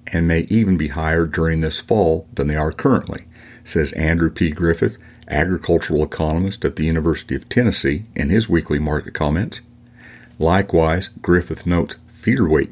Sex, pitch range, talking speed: male, 80-95 Hz, 150 wpm